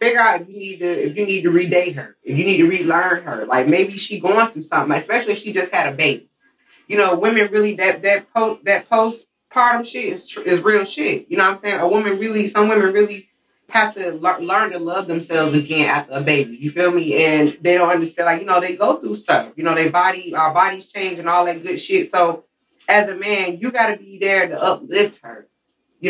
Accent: American